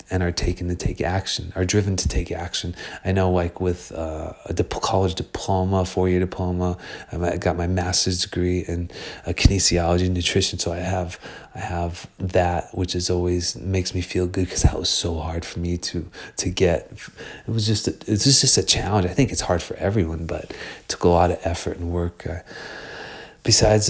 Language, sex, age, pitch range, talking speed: English, male, 30-49, 90-100 Hz, 195 wpm